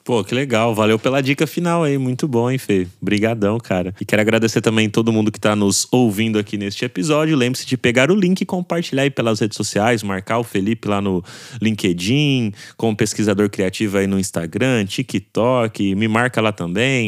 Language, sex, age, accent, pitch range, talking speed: Portuguese, male, 20-39, Brazilian, 110-140 Hz, 195 wpm